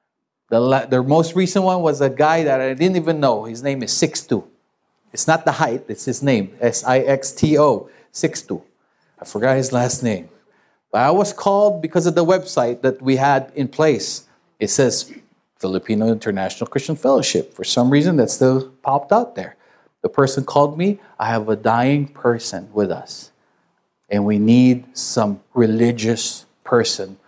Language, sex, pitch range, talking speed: English, male, 115-180 Hz, 165 wpm